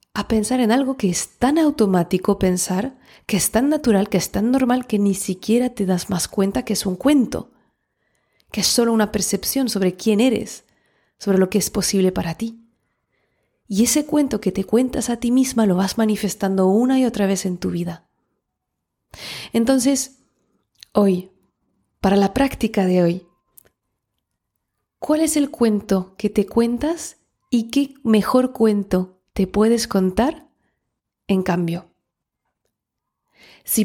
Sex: female